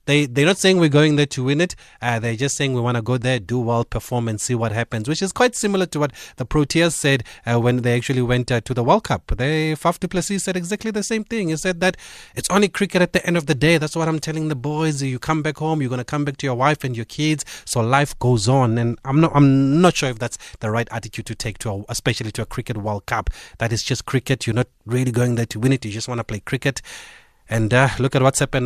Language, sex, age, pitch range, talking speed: English, male, 30-49, 115-140 Hz, 285 wpm